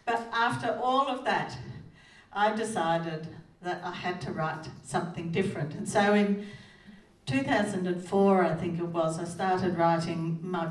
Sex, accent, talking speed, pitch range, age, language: female, Australian, 145 wpm, 165-205 Hz, 60-79, English